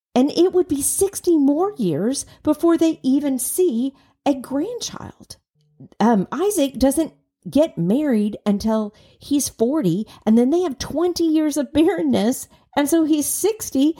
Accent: American